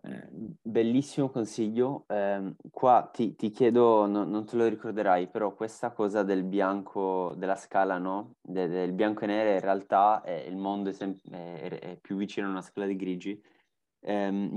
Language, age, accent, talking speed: Italian, 20-39, native, 175 wpm